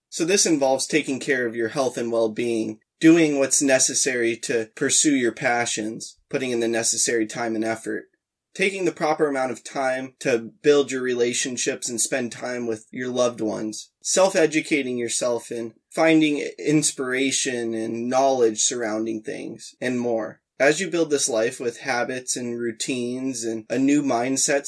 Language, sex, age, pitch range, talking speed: English, male, 20-39, 115-145 Hz, 160 wpm